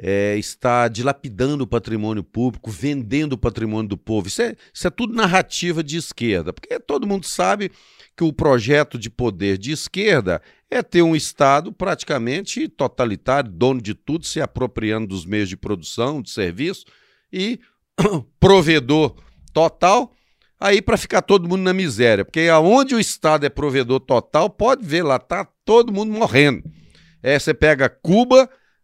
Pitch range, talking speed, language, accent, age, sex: 110-160 Hz, 155 wpm, Portuguese, Brazilian, 50-69, male